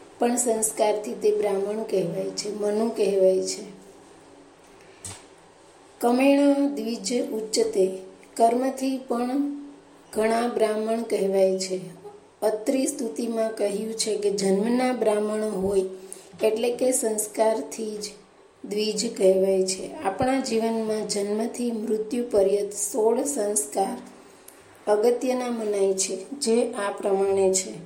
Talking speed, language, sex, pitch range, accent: 55 wpm, Gujarati, female, 205-235 Hz, native